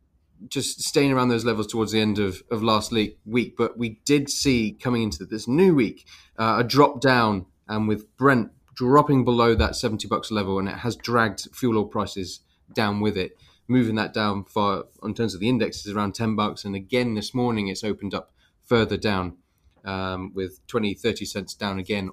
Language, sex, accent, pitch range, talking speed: English, male, British, 95-120 Hz, 200 wpm